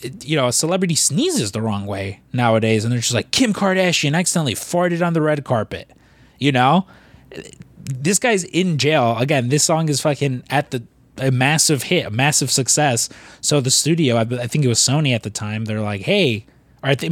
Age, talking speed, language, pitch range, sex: 20-39, 205 wpm, English, 130-175 Hz, male